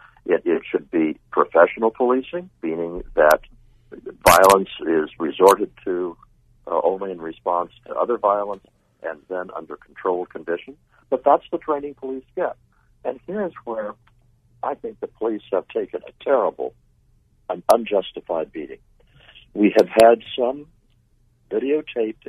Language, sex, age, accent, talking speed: English, male, 60-79, American, 130 wpm